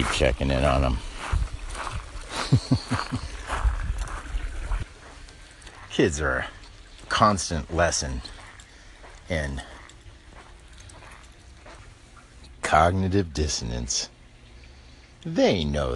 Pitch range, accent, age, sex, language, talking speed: 70-90 Hz, American, 60-79, male, English, 55 wpm